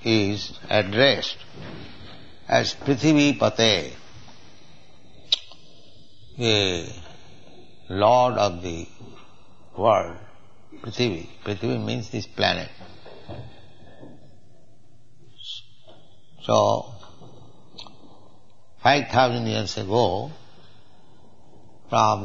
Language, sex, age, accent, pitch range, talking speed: English, male, 60-79, Indian, 100-120 Hz, 55 wpm